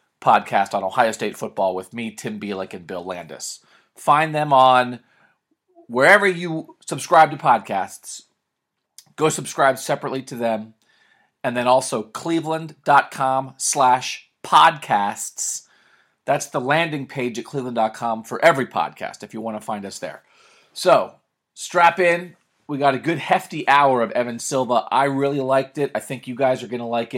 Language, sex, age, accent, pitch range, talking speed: English, male, 30-49, American, 115-155 Hz, 155 wpm